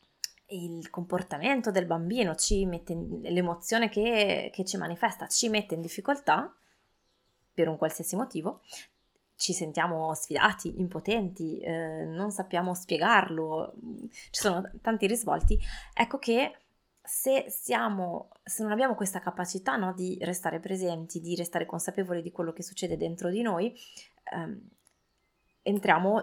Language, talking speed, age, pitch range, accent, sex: Italian, 130 wpm, 20-39, 165-205 Hz, native, female